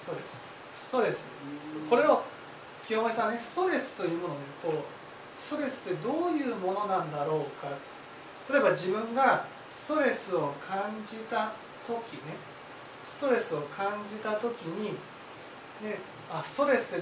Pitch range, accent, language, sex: 185-280 Hz, native, Japanese, male